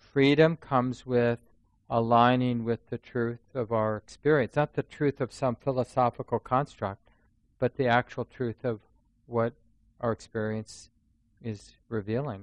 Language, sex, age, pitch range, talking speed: English, male, 40-59, 110-125 Hz, 130 wpm